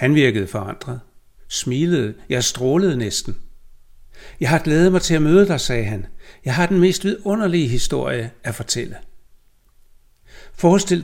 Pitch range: 105-155 Hz